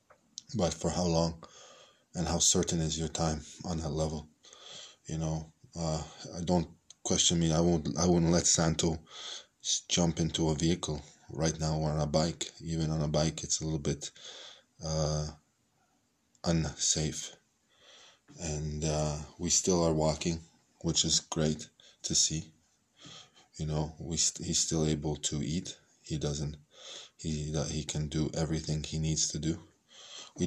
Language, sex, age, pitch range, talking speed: Hebrew, male, 20-39, 75-80 Hz, 155 wpm